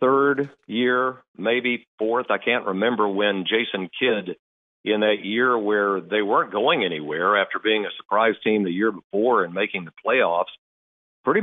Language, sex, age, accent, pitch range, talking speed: English, male, 50-69, American, 100-130 Hz, 165 wpm